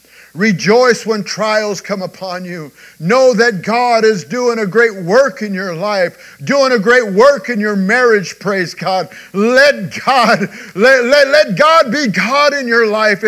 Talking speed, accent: 155 wpm, American